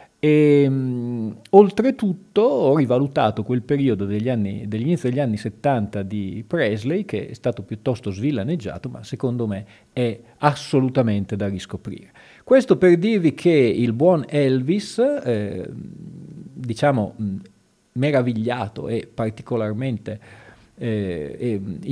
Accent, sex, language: native, male, Italian